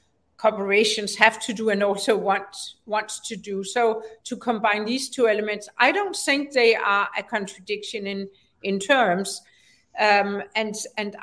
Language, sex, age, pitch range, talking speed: English, female, 60-79, 195-225 Hz, 155 wpm